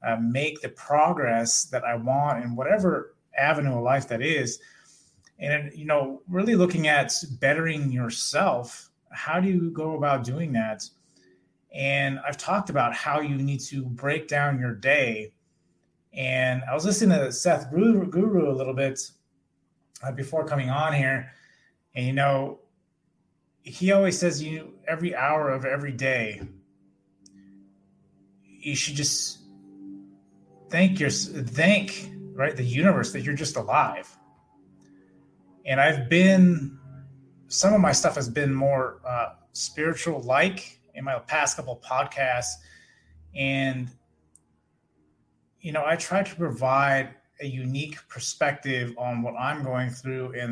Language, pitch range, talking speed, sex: English, 120-150 Hz, 135 wpm, male